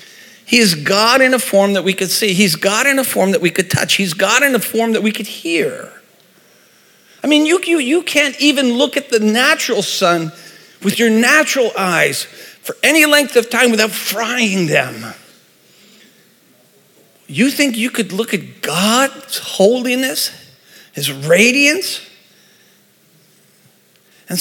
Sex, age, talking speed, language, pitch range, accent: male, 50-69, 155 wpm, English, 185-245 Hz, American